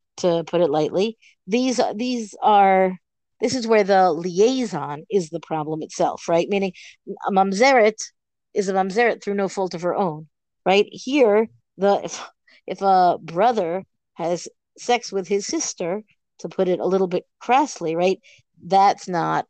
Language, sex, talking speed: English, female, 155 wpm